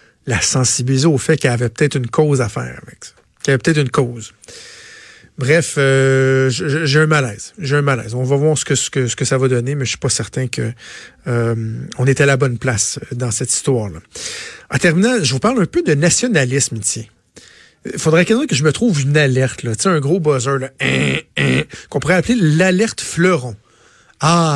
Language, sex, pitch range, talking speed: French, male, 130-170 Hz, 210 wpm